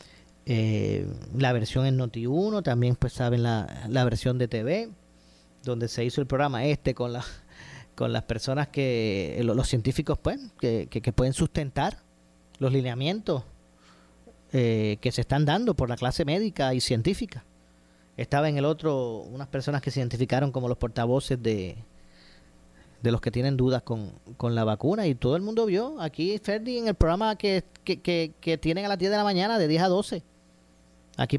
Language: Spanish